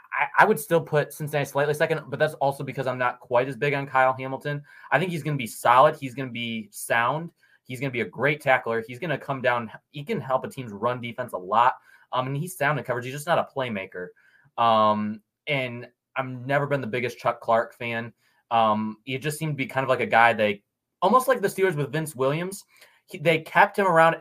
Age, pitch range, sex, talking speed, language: 20-39, 115-145 Hz, male, 245 wpm, English